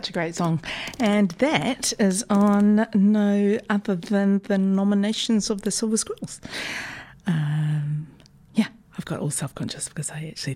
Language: English